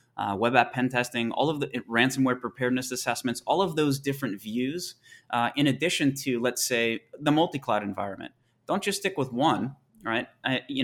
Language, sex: English, male